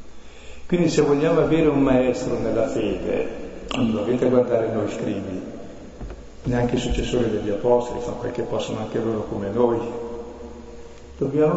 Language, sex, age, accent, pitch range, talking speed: Italian, male, 50-69, native, 120-155 Hz, 140 wpm